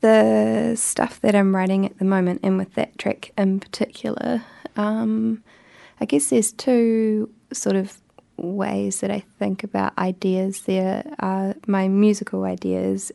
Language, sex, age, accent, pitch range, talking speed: English, female, 20-39, Australian, 180-205 Hz, 145 wpm